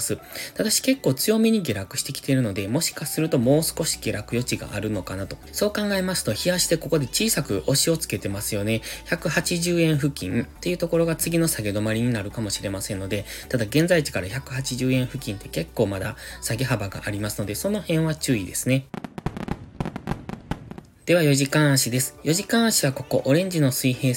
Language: Japanese